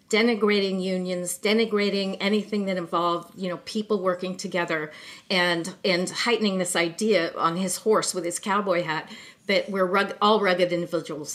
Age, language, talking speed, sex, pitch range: 50-69, English, 155 wpm, female, 185-250 Hz